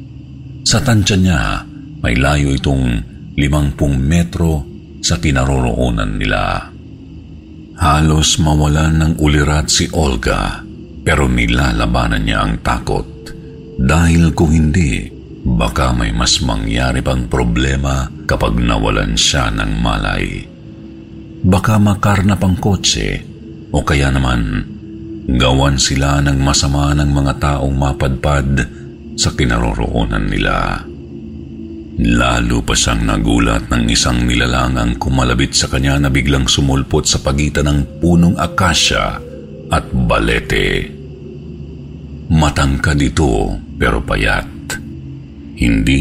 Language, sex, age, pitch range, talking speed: Filipino, male, 50-69, 70-80 Hz, 105 wpm